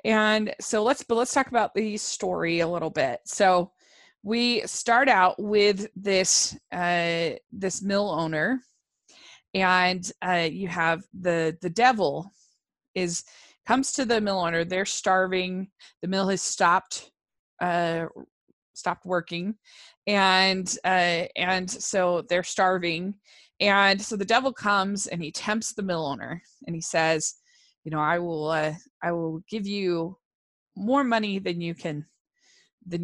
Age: 20-39